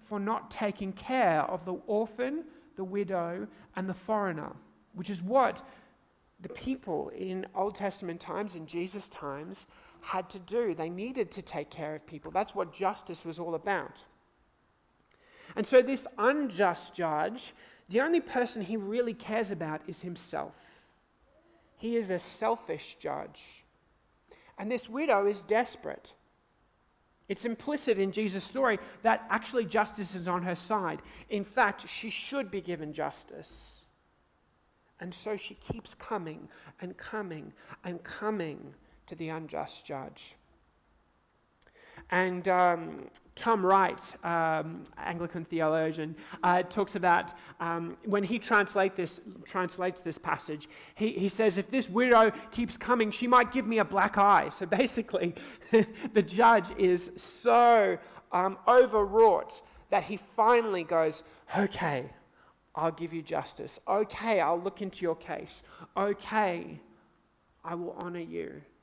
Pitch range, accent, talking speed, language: 170-220 Hz, Australian, 135 wpm, English